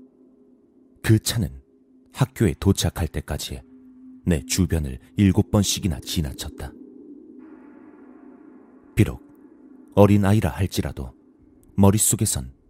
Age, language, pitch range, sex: 40-59, Korean, 85-135 Hz, male